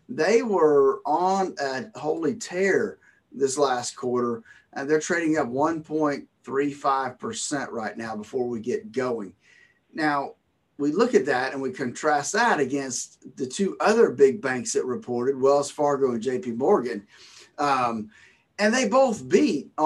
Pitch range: 135-190 Hz